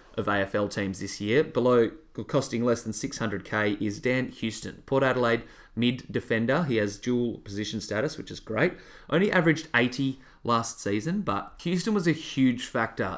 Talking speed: 160 wpm